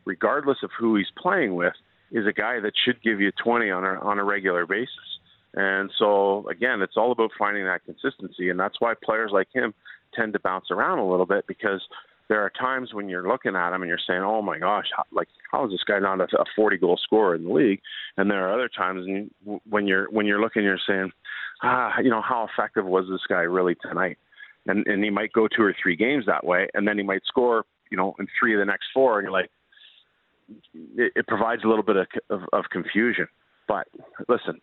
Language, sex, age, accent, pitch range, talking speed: English, male, 40-59, American, 95-110 Hz, 225 wpm